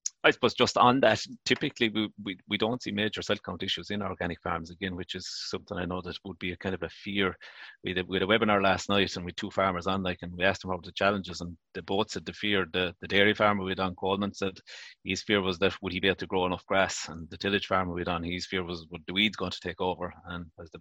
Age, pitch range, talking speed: 30-49, 90-100 Hz, 290 wpm